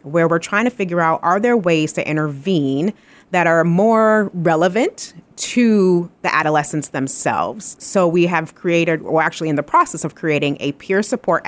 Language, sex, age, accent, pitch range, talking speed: English, female, 30-49, American, 150-185 Hz, 170 wpm